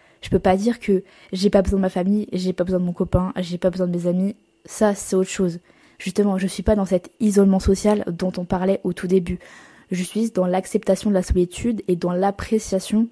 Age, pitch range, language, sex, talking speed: 20-39, 185-225 Hz, French, female, 235 wpm